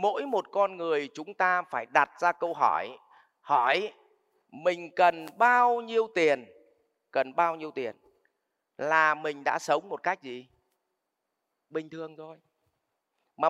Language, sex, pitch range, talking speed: Vietnamese, male, 160-240 Hz, 140 wpm